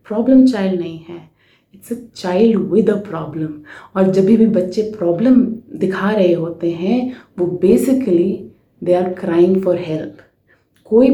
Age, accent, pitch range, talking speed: 20-39, native, 185-255 Hz, 145 wpm